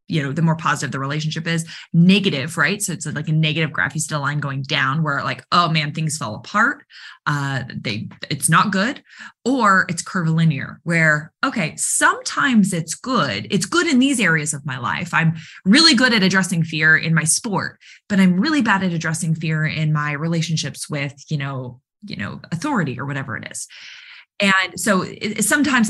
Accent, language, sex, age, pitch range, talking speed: American, English, female, 20-39, 155-200 Hz, 190 wpm